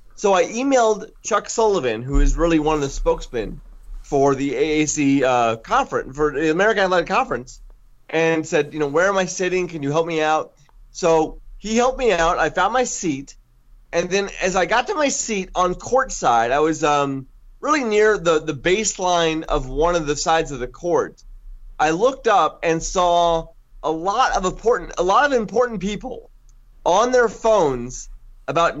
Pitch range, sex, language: 145-205 Hz, male, English